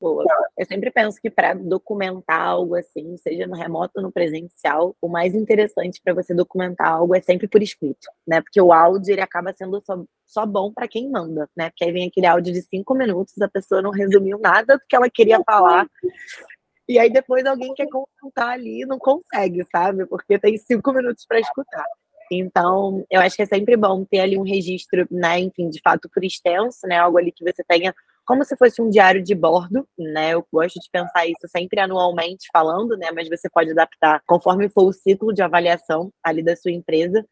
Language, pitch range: English, 175-210 Hz